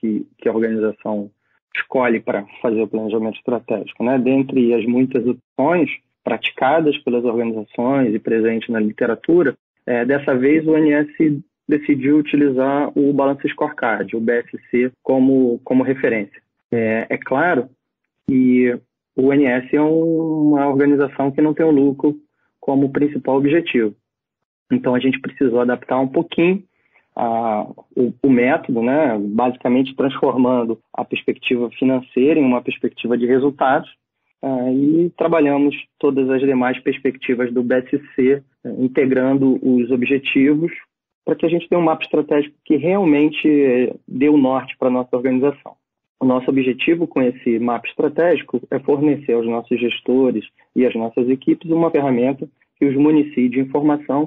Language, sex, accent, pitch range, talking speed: Portuguese, male, Brazilian, 125-145 Hz, 145 wpm